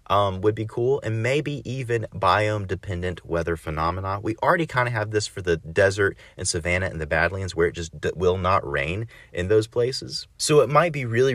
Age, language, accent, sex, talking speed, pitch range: 30-49, English, American, male, 205 wpm, 85-110 Hz